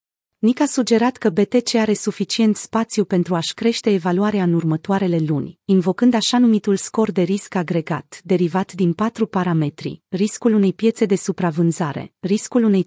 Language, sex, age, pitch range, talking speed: Romanian, female, 30-49, 185-225 Hz, 155 wpm